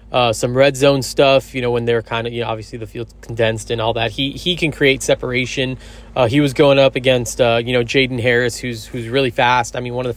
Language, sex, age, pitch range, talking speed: English, male, 20-39, 115-130 Hz, 265 wpm